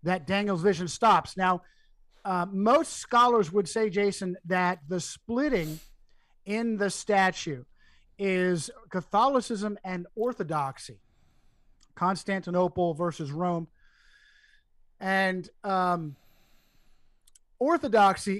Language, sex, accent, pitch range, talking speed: English, male, American, 170-205 Hz, 90 wpm